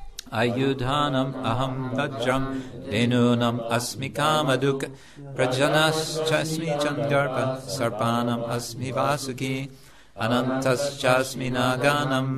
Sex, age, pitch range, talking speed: male, 50-69, 120-140 Hz, 80 wpm